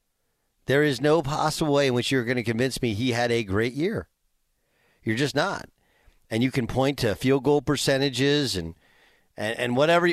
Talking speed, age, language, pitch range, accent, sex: 190 wpm, 40-59, English, 120-160 Hz, American, male